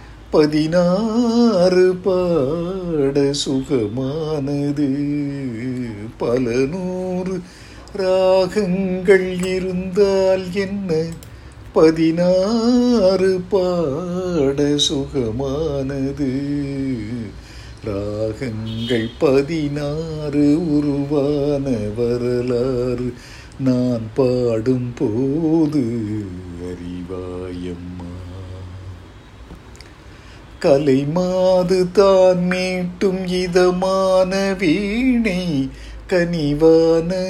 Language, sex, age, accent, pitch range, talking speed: Tamil, male, 50-69, native, 135-190 Hz, 40 wpm